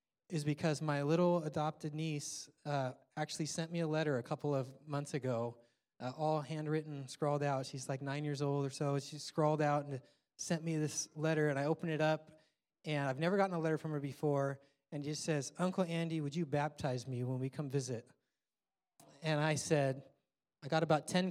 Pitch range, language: 140-170 Hz, English